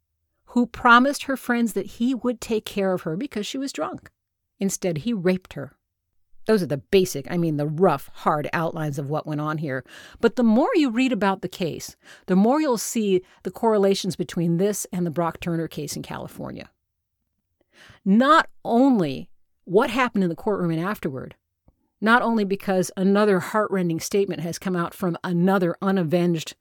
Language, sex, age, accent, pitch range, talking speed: English, female, 50-69, American, 165-225 Hz, 175 wpm